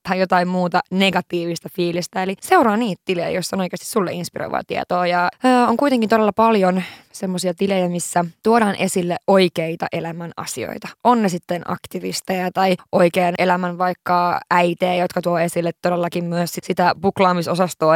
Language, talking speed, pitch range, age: Finnish, 150 wpm, 175-190 Hz, 20-39